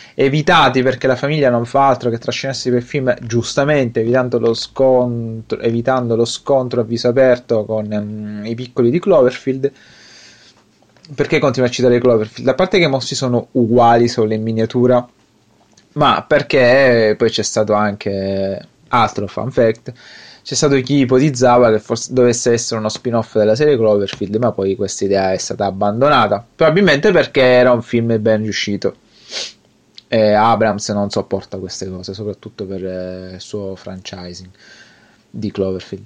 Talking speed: 155 wpm